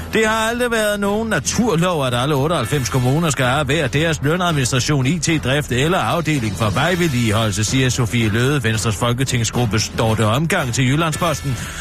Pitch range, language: 120-175 Hz, Danish